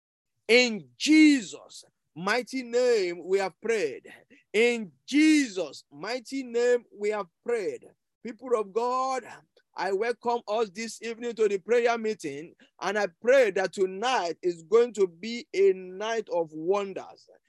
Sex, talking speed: male, 135 wpm